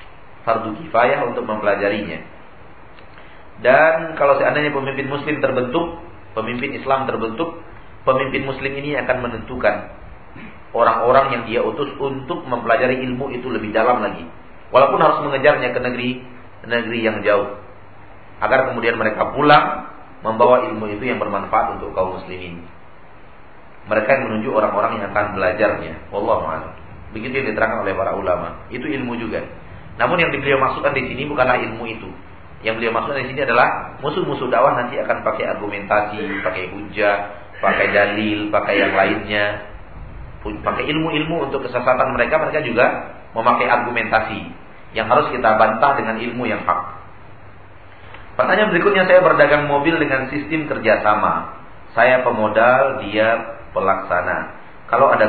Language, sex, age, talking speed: Malay, male, 40-59, 135 wpm